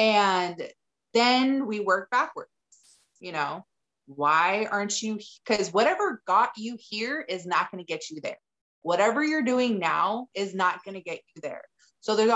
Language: English